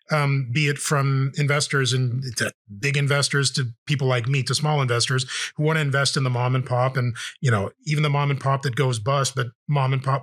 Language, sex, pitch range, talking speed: English, male, 125-155 Hz, 230 wpm